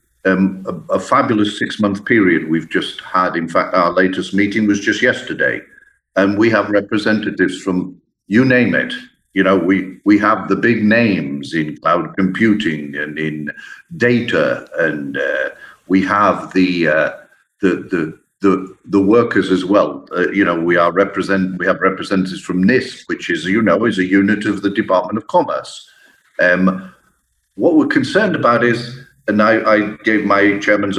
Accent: British